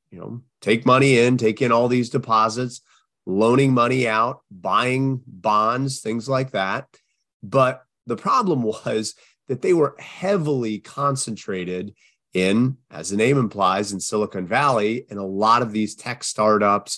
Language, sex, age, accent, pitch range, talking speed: English, male, 30-49, American, 105-130 Hz, 150 wpm